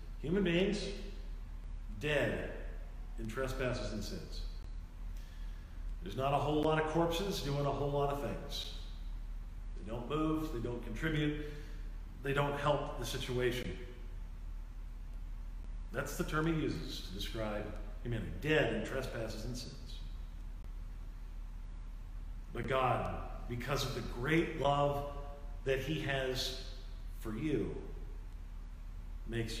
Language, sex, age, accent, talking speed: English, male, 50-69, American, 115 wpm